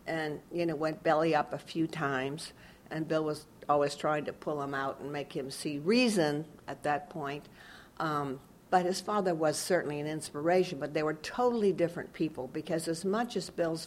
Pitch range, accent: 150-195 Hz, American